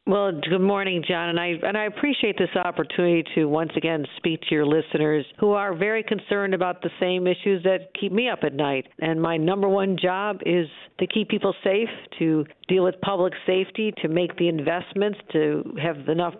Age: 50-69